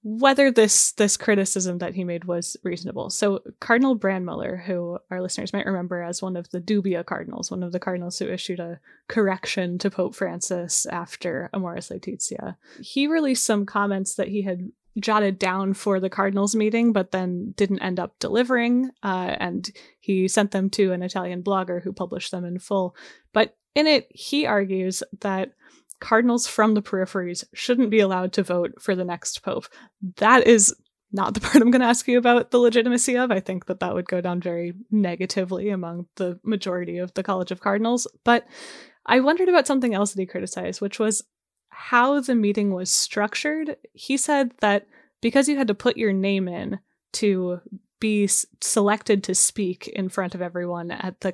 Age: 10-29